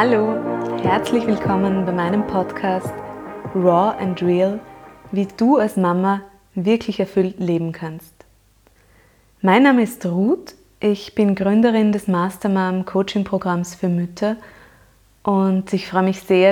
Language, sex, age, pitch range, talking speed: German, female, 20-39, 170-215 Hz, 120 wpm